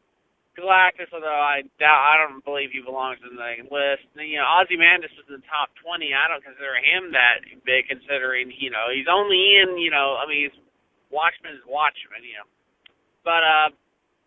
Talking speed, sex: 180 wpm, male